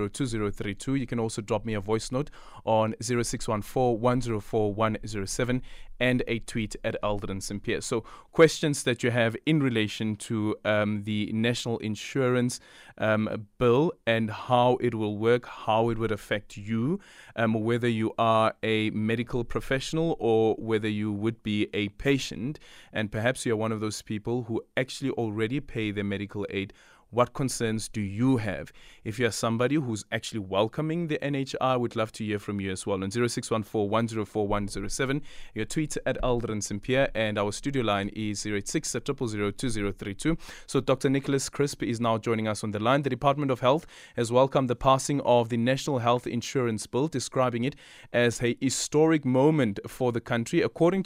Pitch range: 110-130 Hz